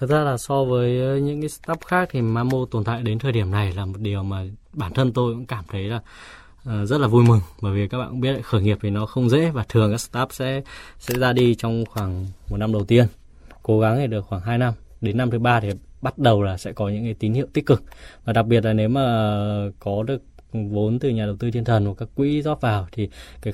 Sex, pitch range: male, 105-125 Hz